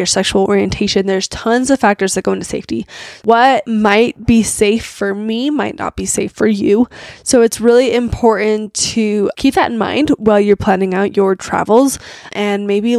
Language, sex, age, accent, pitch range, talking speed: English, female, 10-29, American, 205-245 Hz, 180 wpm